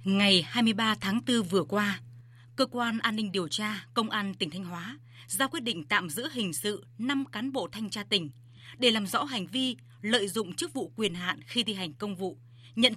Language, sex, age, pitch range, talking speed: Vietnamese, female, 20-39, 150-240 Hz, 215 wpm